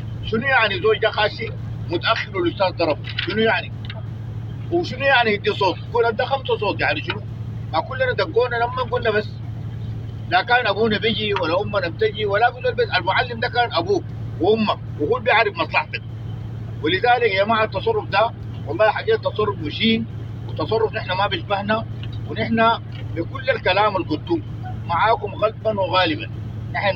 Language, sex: English, male